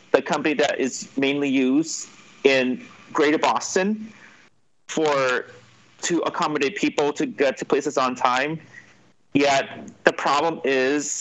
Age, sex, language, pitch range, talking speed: 30-49, male, English, 130-175 Hz, 125 wpm